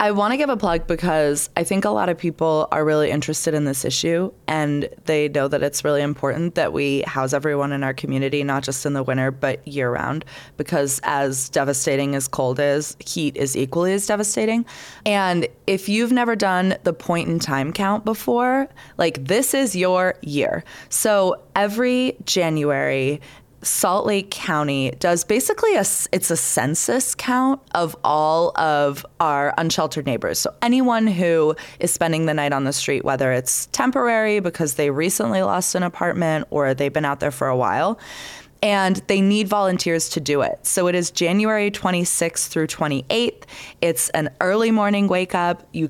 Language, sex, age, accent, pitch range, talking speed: English, female, 20-39, American, 145-195 Hz, 175 wpm